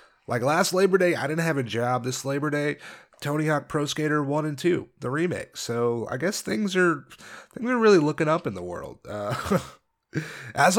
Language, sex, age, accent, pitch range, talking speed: English, male, 30-49, American, 125-165 Hz, 200 wpm